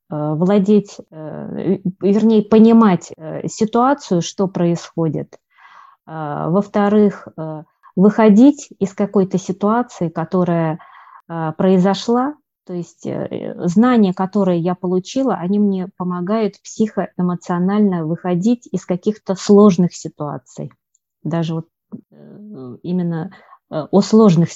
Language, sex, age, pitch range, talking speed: Russian, female, 20-39, 170-210 Hz, 80 wpm